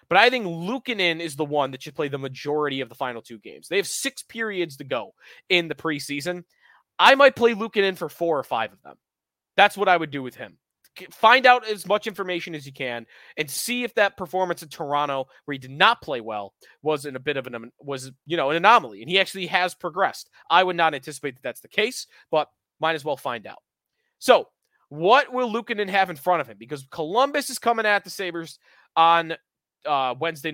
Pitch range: 140-195 Hz